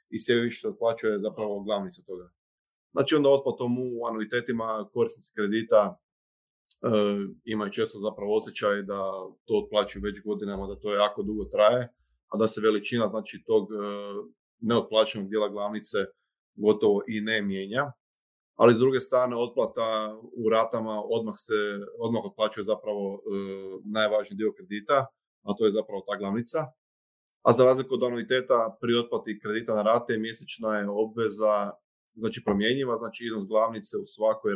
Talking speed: 150 wpm